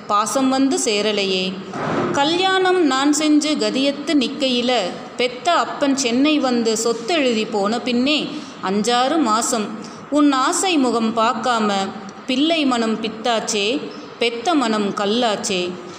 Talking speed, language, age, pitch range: 105 wpm, Tamil, 30-49, 210-260 Hz